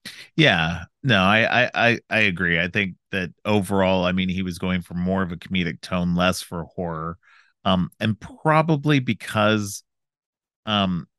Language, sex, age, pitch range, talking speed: English, male, 30-49, 85-100 Hz, 155 wpm